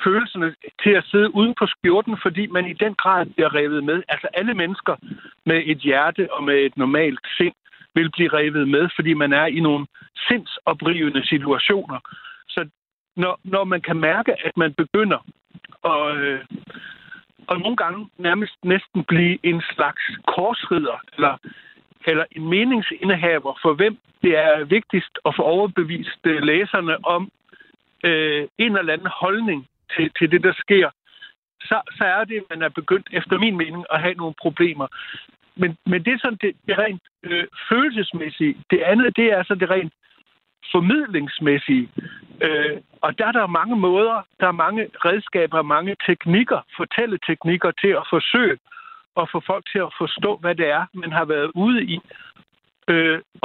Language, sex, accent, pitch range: Danish, male, native, 160-205 Hz